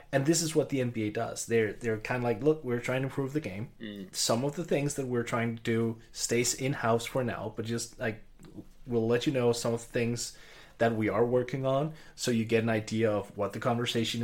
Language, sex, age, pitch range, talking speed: English, male, 20-39, 105-120 Hz, 240 wpm